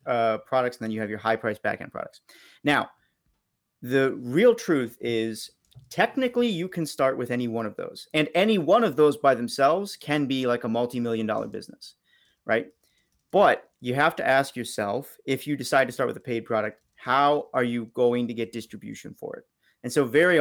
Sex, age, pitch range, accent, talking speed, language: male, 40-59, 115-145 Hz, American, 195 wpm, English